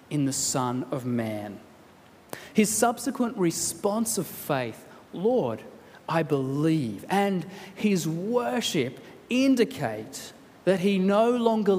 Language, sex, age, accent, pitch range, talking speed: English, male, 30-49, Australian, 170-230 Hz, 105 wpm